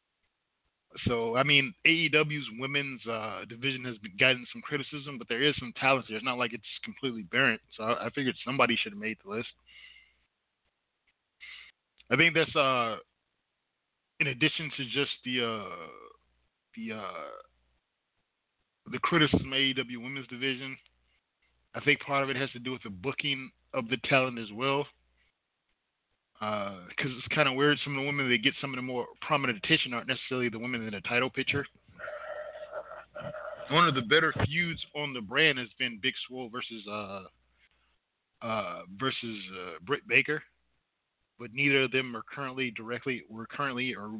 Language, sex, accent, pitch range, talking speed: English, male, American, 120-140 Hz, 165 wpm